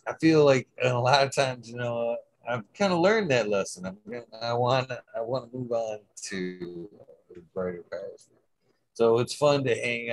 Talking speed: 190 wpm